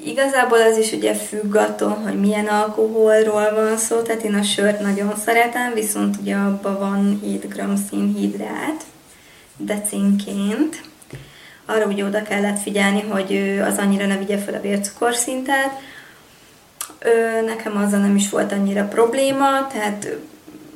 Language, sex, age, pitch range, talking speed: Hungarian, female, 20-39, 200-230 Hz, 135 wpm